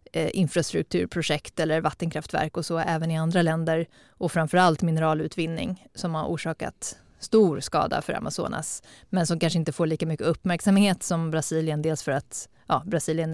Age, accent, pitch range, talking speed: 20-39, native, 160-195 Hz, 155 wpm